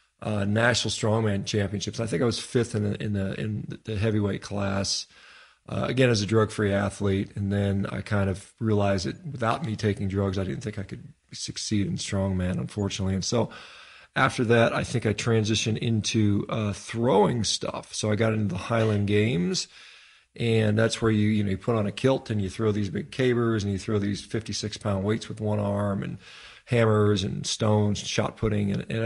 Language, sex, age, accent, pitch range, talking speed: English, male, 40-59, American, 100-115 Hz, 200 wpm